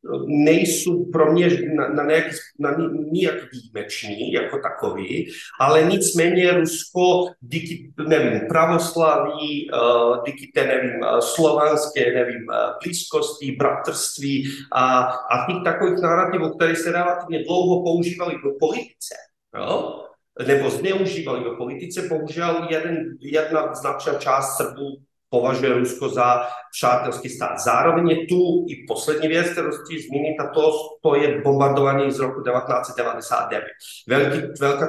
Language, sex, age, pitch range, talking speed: Czech, male, 40-59, 140-170 Hz, 115 wpm